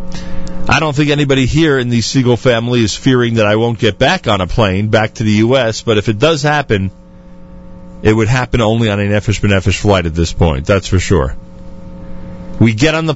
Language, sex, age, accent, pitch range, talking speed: English, male, 40-59, American, 90-125 Hz, 210 wpm